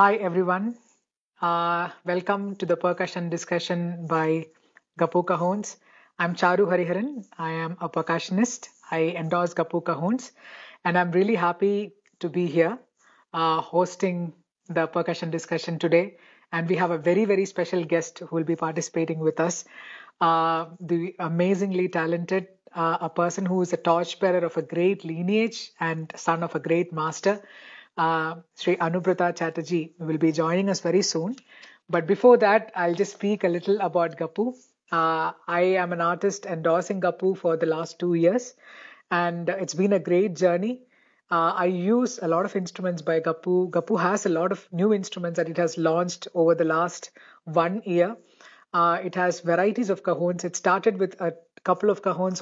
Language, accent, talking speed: English, Indian, 165 wpm